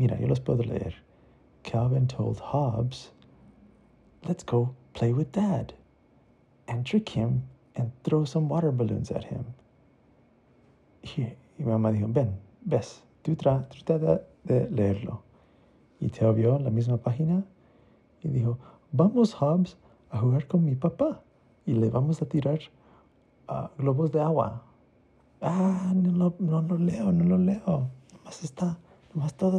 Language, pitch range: Spanish, 120-165 Hz